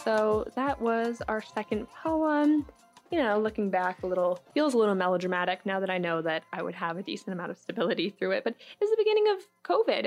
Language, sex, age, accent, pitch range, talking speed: English, female, 10-29, American, 180-215 Hz, 225 wpm